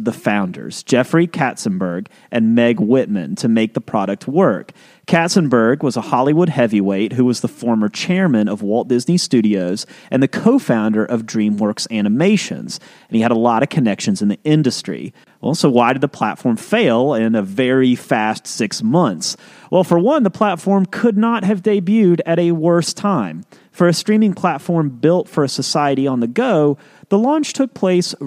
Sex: male